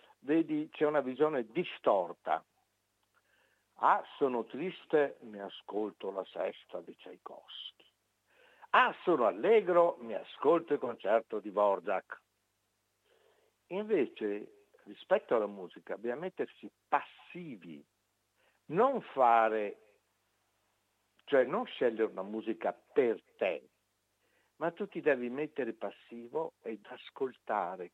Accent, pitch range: native, 110-150 Hz